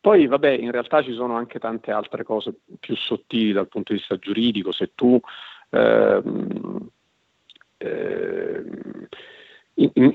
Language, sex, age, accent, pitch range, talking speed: Italian, male, 50-69, native, 110-145 Hz, 130 wpm